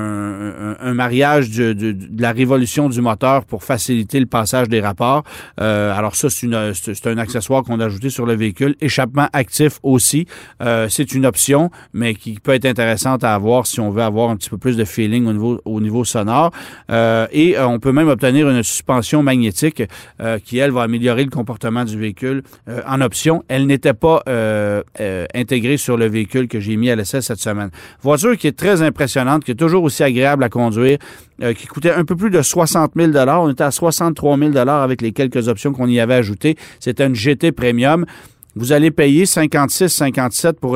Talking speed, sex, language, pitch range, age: 200 wpm, male, French, 115-145 Hz, 40-59